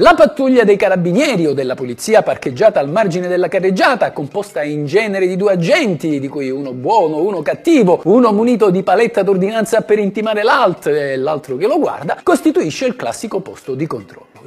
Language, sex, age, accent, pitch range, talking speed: Italian, male, 50-69, native, 145-225 Hz, 180 wpm